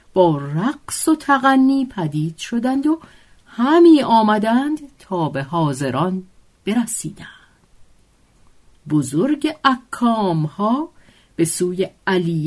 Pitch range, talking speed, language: 160-235 Hz, 90 wpm, Persian